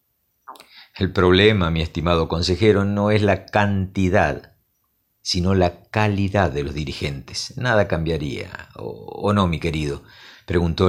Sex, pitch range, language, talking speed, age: male, 90-115 Hz, Spanish, 125 wpm, 50-69